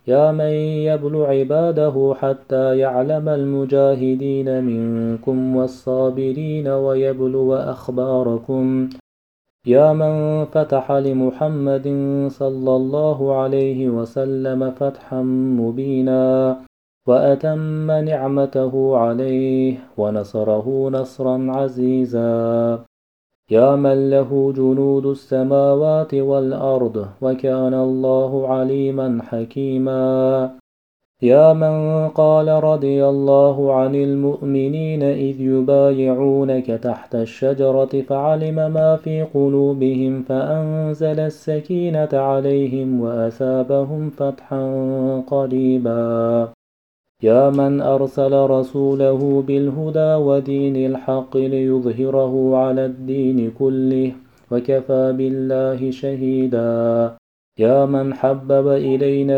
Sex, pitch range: male, 130-140 Hz